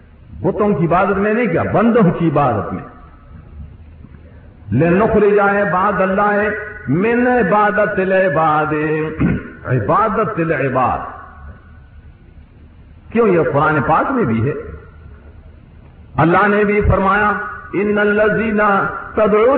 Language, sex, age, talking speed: Urdu, male, 50-69, 110 wpm